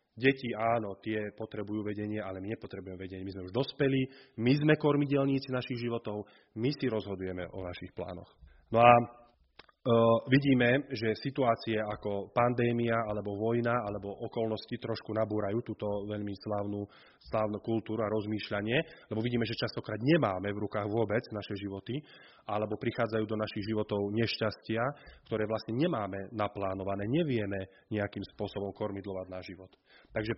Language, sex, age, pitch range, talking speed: Slovak, male, 30-49, 100-130 Hz, 140 wpm